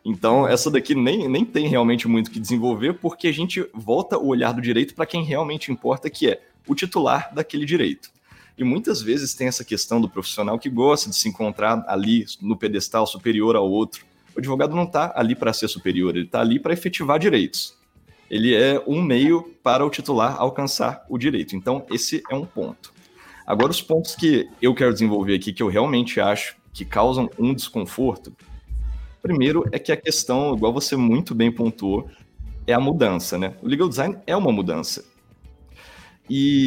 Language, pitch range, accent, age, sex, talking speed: Portuguese, 110-150 Hz, Brazilian, 20-39, male, 185 wpm